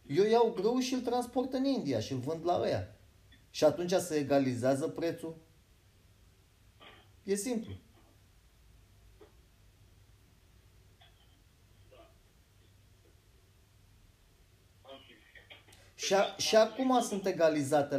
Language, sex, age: Romanian, male, 30-49